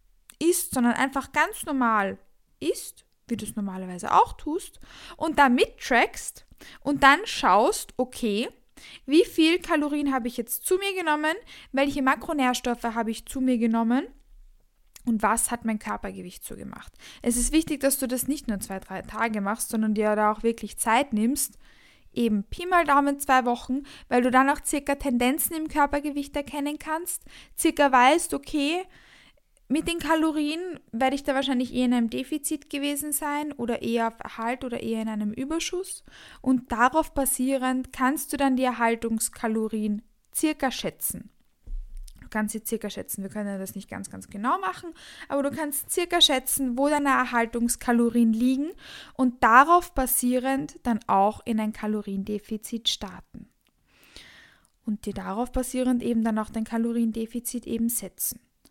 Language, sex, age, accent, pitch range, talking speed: German, female, 10-29, German, 225-295 Hz, 155 wpm